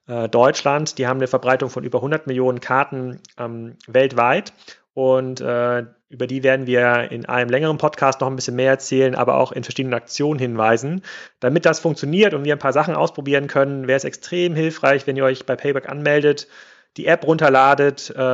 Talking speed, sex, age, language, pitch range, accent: 185 wpm, male, 40-59, German, 125-150 Hz, German